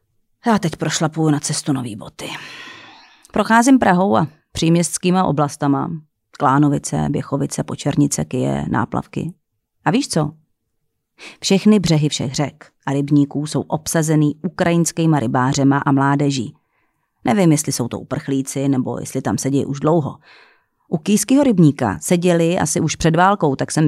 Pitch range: 140-185 Hz